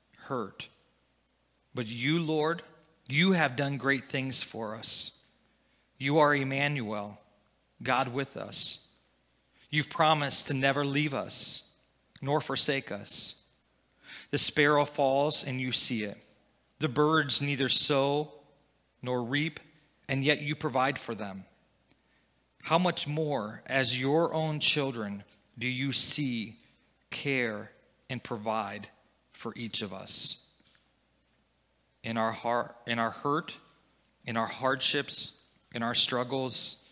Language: English